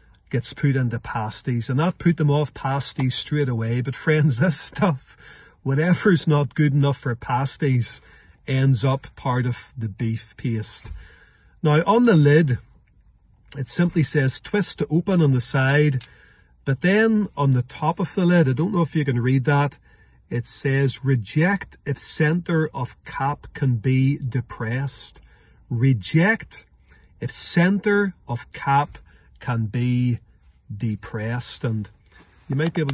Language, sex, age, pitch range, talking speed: English, male, 40-59, 120-150 Hz, 150 wpm